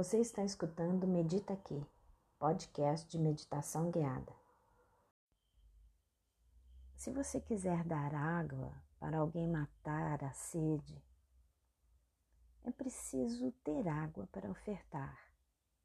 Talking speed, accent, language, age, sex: 95 wpm, Brazilian, Portuguese, 30-49, female